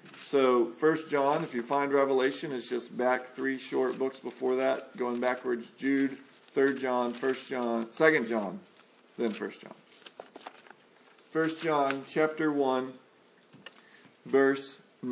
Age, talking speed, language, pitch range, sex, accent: 40-59, 125 wpm, English, 130-165 Hz, male, American